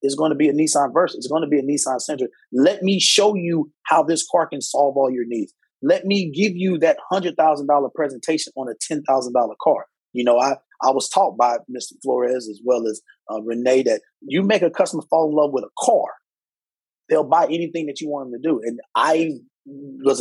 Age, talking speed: 30-49, 220 wpm